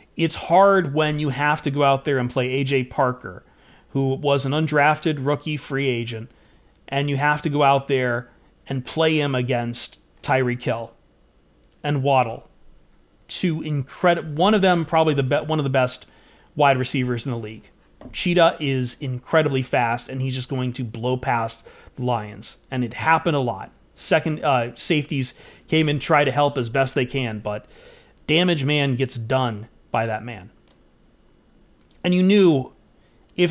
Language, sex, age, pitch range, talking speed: English, male, 30-49, 130-160 Hz, 170 wpm